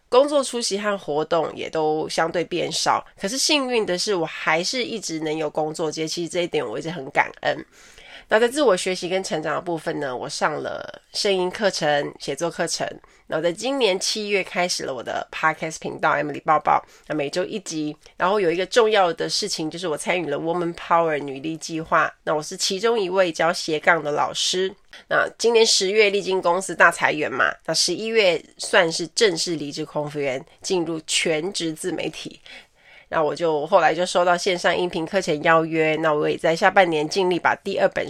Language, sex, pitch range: Chinese, female, 160-205 Hz